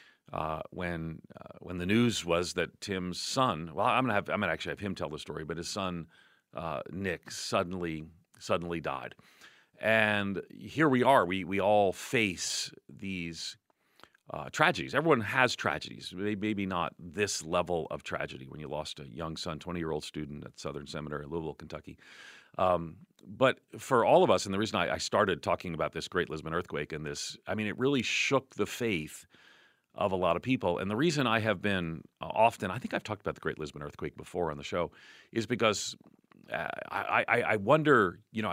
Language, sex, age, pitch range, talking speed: English, male, 40-59, 80-100 Hz, 195 wpm